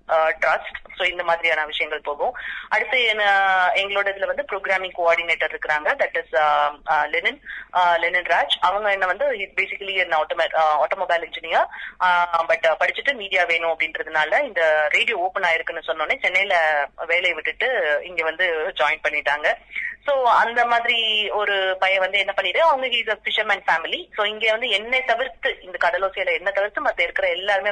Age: 20-39